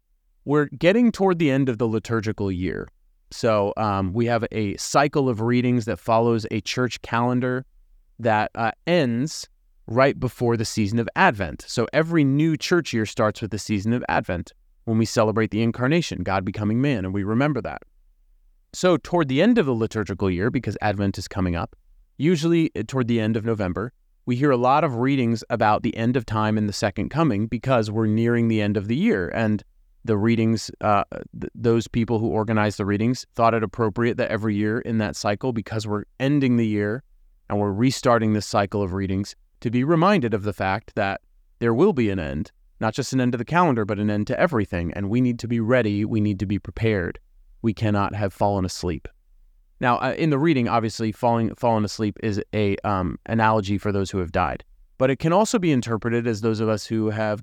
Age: 30-49